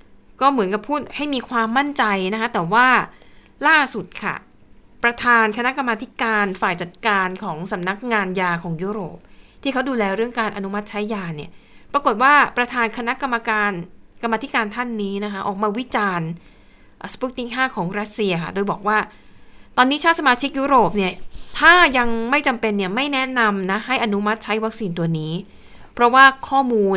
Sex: female